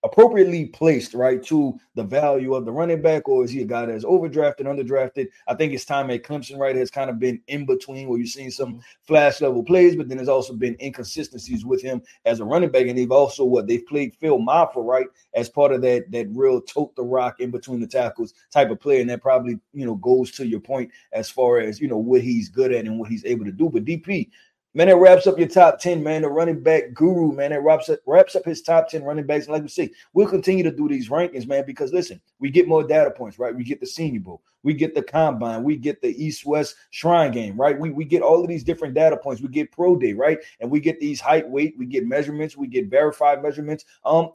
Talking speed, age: 255 wpm, 30-49